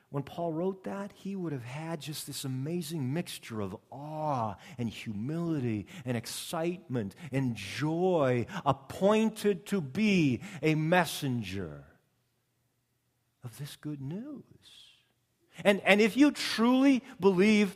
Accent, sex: American, male